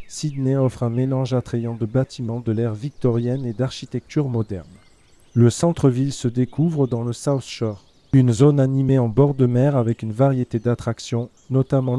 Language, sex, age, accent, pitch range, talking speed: French, male, 40-59, French, 115-135 Hz, 165 wpm